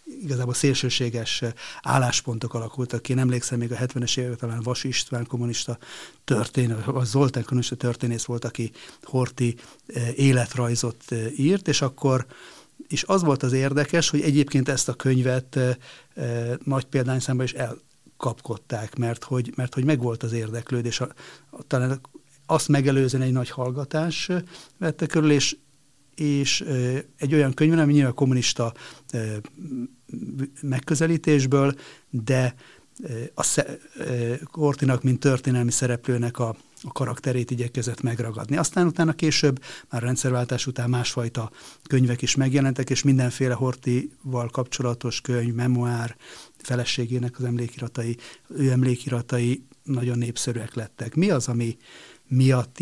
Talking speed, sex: 125 wpm, male